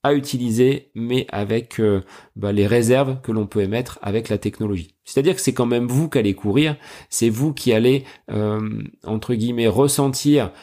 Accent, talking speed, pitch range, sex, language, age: French, 180 wpm, 105-135 Hz, male, French, 40-59